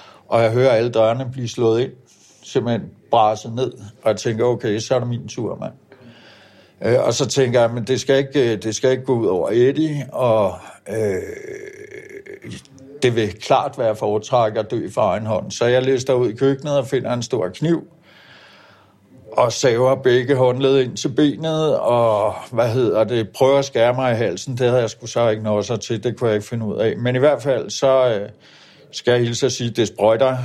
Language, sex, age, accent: Danish, male, 60-79, native